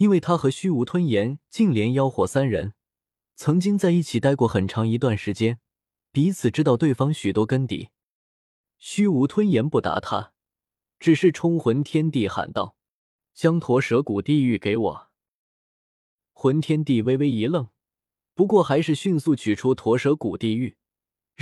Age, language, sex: 20-39, Chinese, male